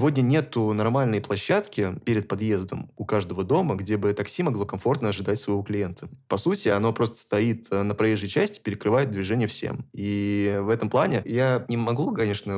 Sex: male